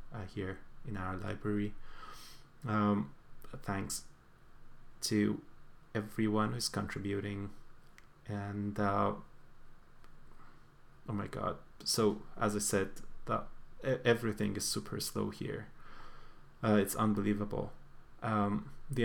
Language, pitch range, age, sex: English, 105-125 Hz, 20-39, male